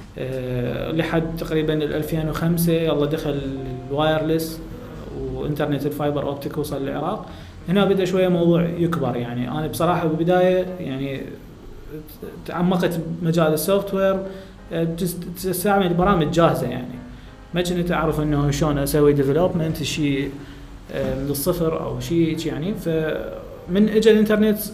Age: 20-39